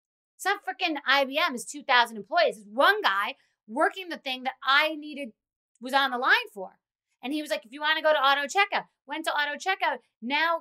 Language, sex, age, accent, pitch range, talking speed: English, female, 30-49, American, 245-360 Hz, 205 wpm